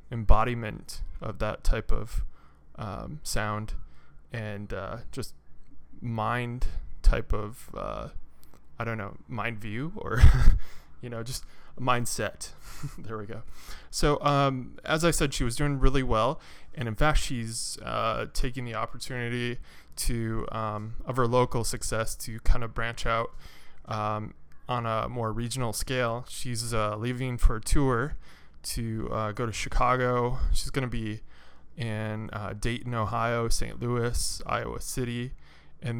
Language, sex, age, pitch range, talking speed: English, male, 20-39, 105-125 Hz, 145 wpm